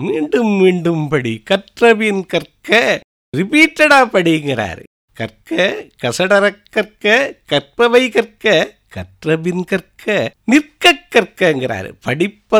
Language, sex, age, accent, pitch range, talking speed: English, male, 50-69, Indian, 145-230 Hz, 50 wpm